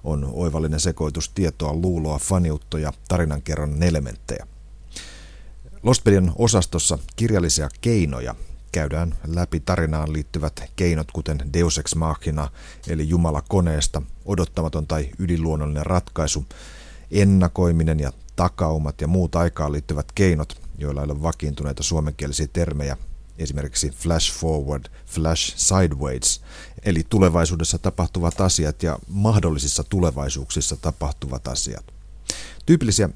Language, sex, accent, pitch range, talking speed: Finnish, male, native, 75-90 Hz, 105 wpm